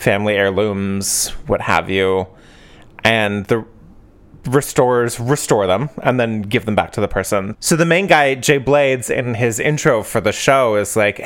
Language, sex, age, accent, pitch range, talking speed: English, male, 30-49, American, 105-140 Hz, 170 wpm